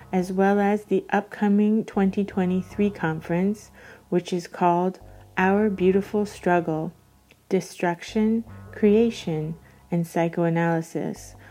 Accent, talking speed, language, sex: American, 90 wpm, English, female